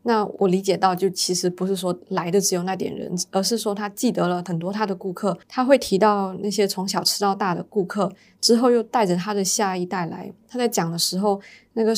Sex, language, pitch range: female, Chinese, 185-215 Hz